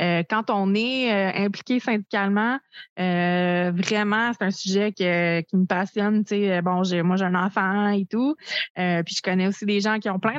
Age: 20-39